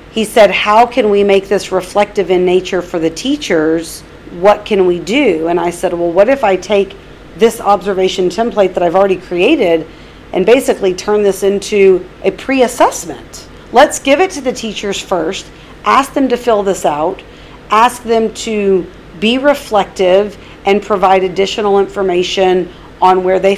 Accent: American